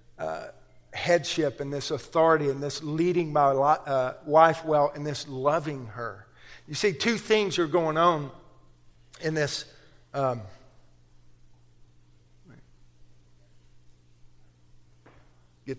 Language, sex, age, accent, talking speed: English, male, 50-69, American, 105 wpm